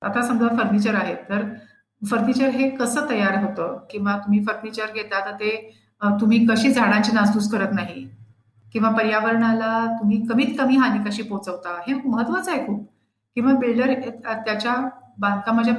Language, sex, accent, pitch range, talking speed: Marathi, female, native, 200-245 Hz, 145 wpm